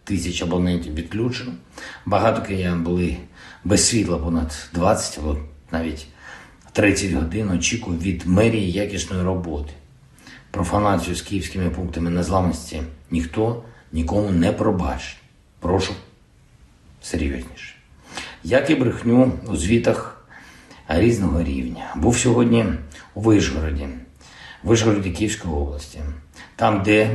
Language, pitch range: Ukrainian, 80-105 Hz